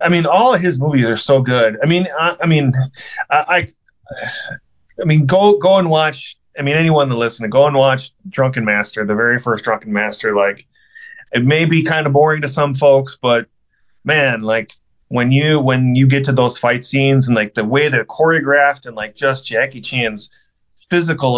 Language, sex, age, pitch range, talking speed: English, male, 30-49, 115-145 Hz, 195 wpm